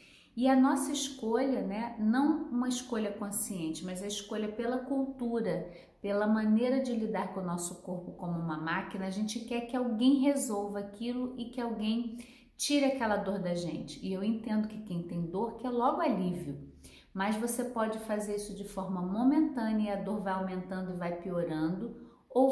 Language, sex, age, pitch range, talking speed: Portuguese, female, 40-59, 190-240 Hz, 175 wpm